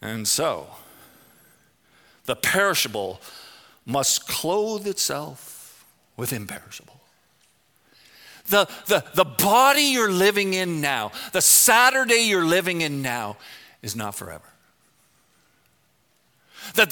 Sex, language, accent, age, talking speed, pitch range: male, English, American, 50-69, 90 wpm, 155-235 Hz